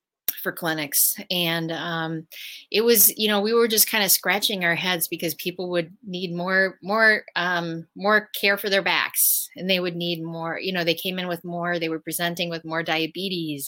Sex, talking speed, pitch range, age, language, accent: female, 200 wpm, 160-195 Hz, 30-49, English, American